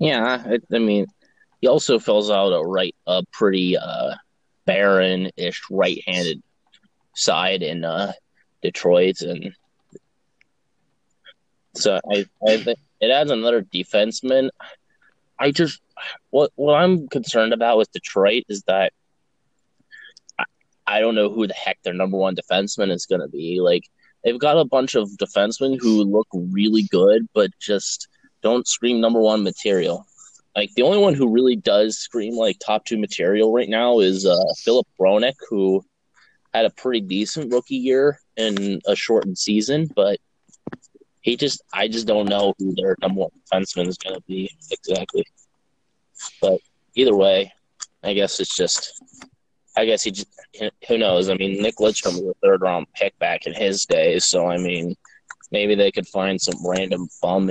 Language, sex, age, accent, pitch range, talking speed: English, male, 20-39, American, 95-125 Hz, 160 wpm